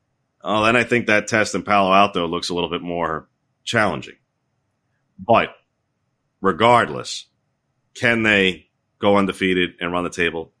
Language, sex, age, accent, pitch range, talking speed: English, male, 40-59, American, 85-115 Hz, 140 wpm